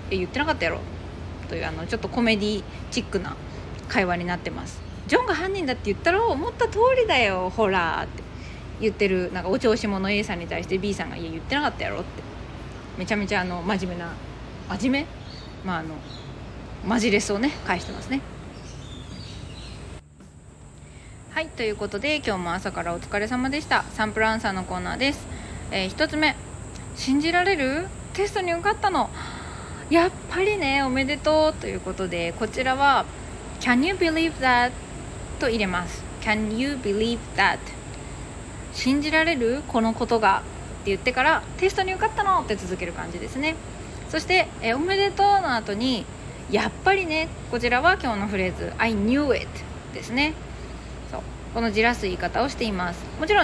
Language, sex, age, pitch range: Japanese, female, 20-39, 200-310 Hz